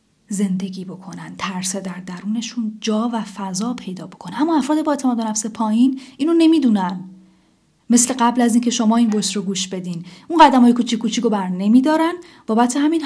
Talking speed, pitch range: 180 wpm, 195-255 Hz